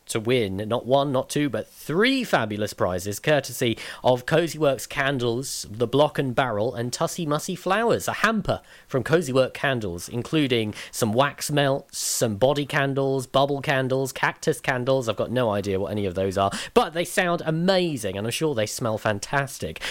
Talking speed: 180 wpm